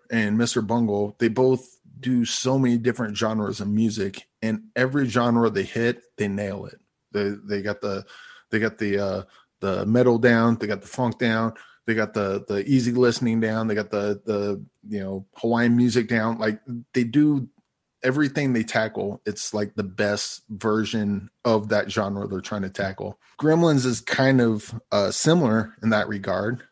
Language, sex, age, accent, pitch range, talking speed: English, male, 20-39, American, 105-125 Hz, 175 wpm